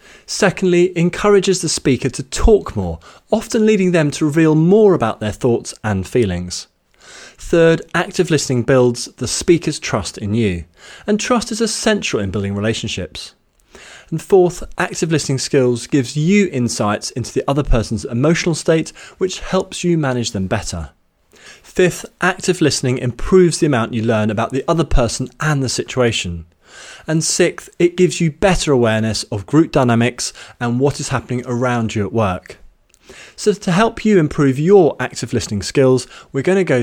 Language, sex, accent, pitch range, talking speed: English, male, British, 115-170 Hz, 165 wpm